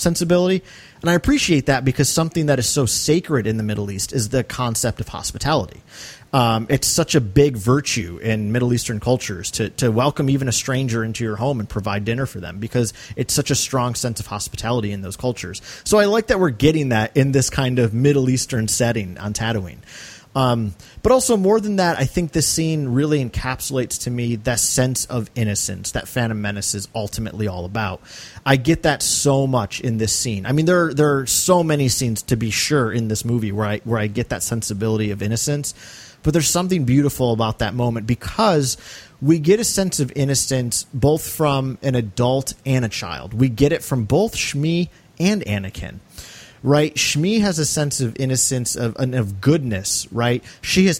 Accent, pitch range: American, 110-150 Hz